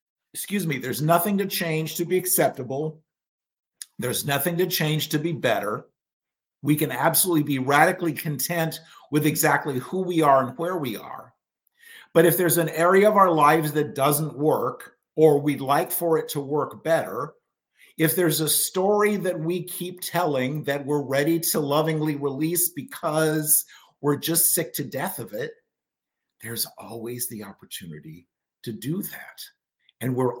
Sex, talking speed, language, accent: male, 160 wpm, English, American